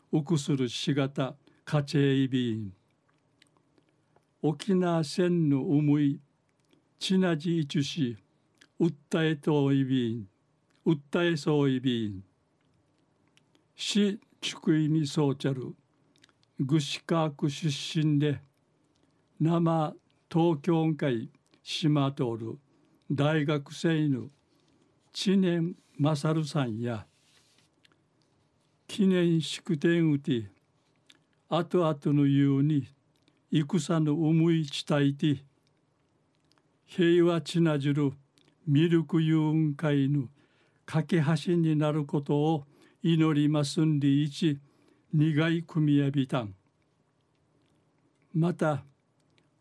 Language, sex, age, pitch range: Japanese, male, 60-79, 140-160 Hz